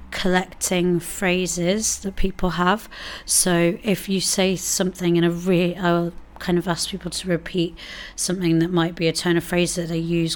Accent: British